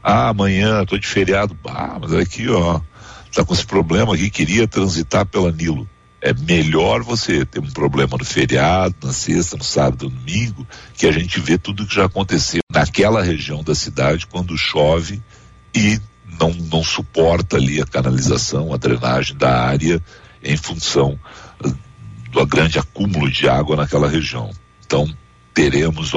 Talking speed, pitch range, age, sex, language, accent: 155 wpm, 75-110 Hz, 60-79, male, Portuguese, Brazilian